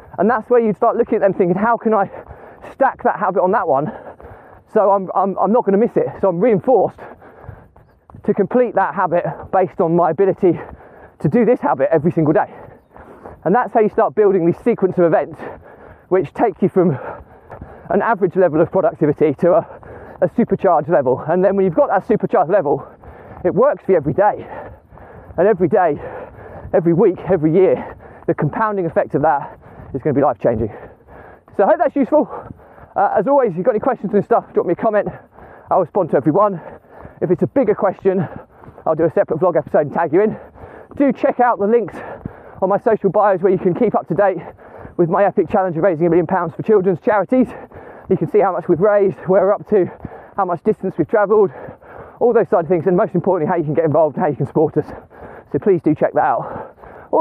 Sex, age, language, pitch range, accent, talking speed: male, 20-39, English, 175-220 Hz, British, 215 wpm